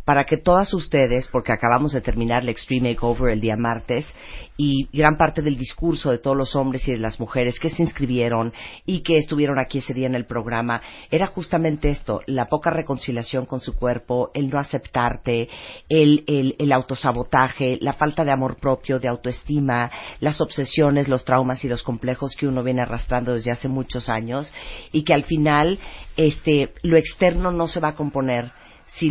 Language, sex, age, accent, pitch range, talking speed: Spanish, female, 40-59, Mexican, 125-150 Hz, 185 wpm